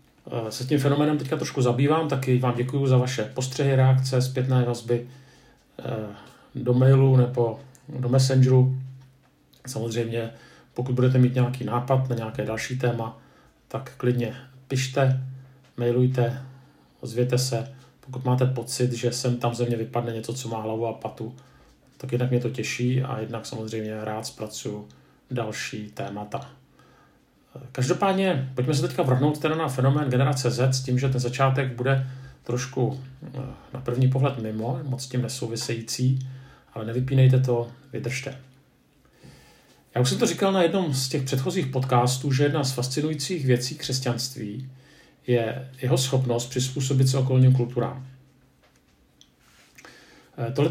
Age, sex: 40-59, male